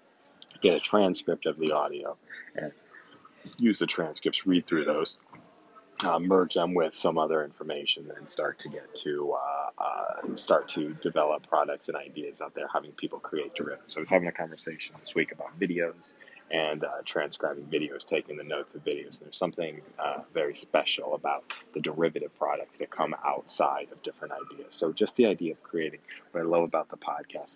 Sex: male